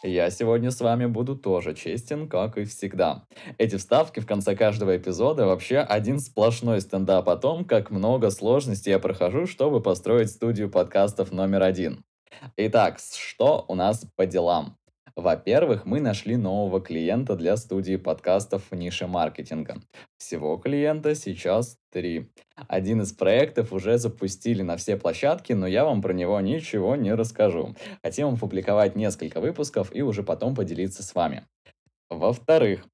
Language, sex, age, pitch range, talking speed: Russian, male, 20-39, 95-120 Hz, 150 wpm